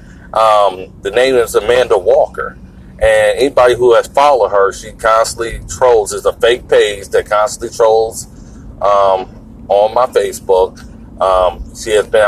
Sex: male